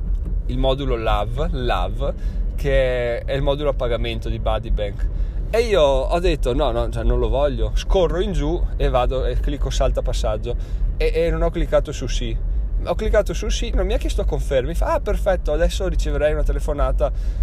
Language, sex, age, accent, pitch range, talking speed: Italian, male, 20-39, native, 105-150 Hz, 190 wpm